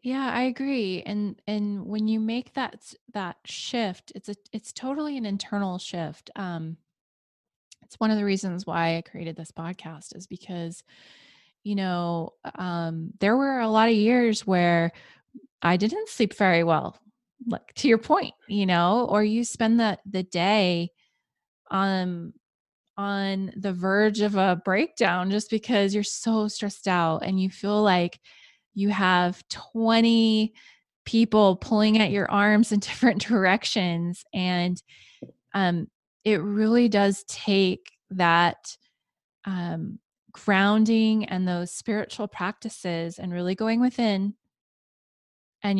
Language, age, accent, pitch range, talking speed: English, 20-39, American, 180-220 Hz, 135 wpm